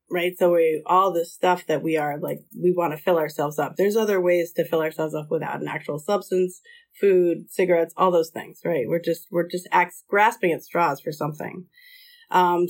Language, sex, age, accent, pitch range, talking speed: English, female, 30-49, American, 165-230 Hz, 210 wpm